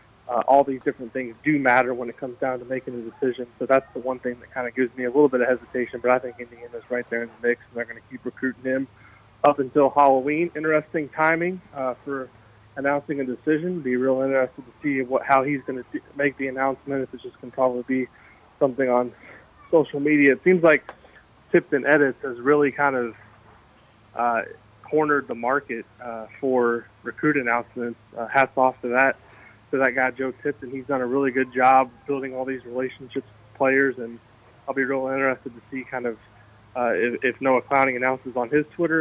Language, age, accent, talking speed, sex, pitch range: English, 20-39, American, 210 wpm, male, 120-135 Hz